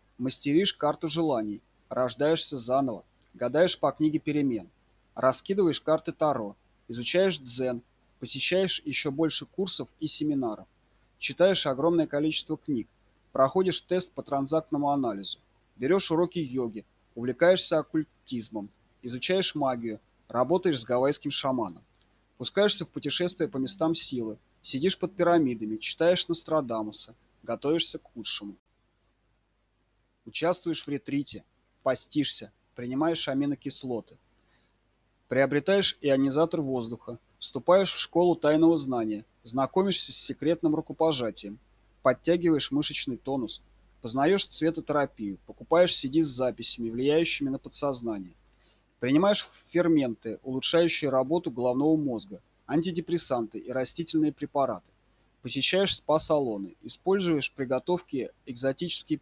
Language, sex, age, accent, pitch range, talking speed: Russian, male, 30-49, native, 115-160 Hz, 100 wpm